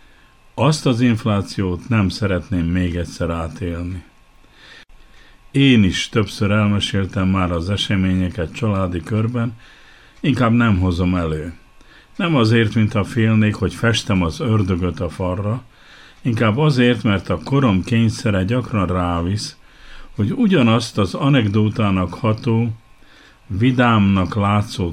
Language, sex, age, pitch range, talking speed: Hungarian, male, 50-69, 95-115 Hz, 110 wpm